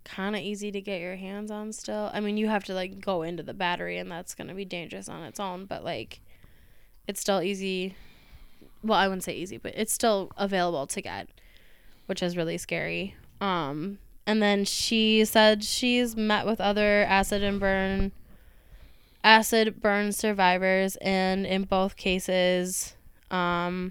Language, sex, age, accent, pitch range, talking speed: English, female, 10-29, American, 180-205 Hz, 170 wpm